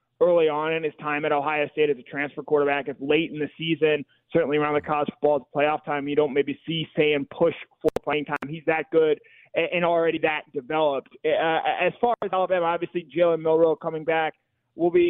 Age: 20-39